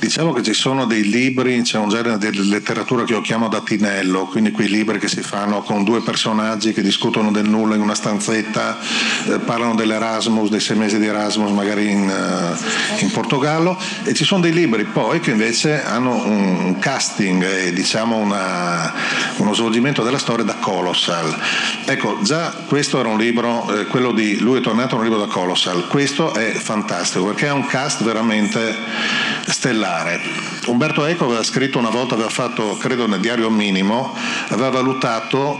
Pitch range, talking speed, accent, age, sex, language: 105-140 Hz, 175 wpm, native, 40-59, male, Italian